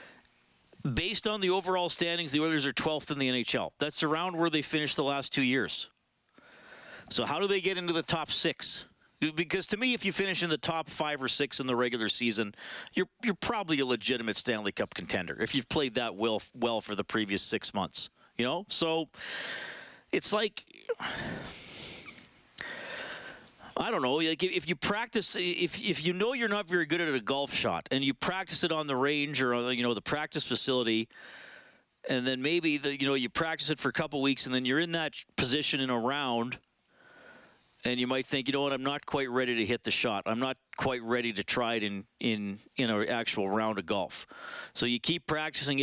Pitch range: 125-165 Hz